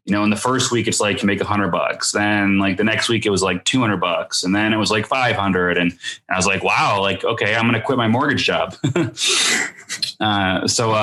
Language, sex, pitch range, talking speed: Italian, male, 95-110 Hz, 245 wpm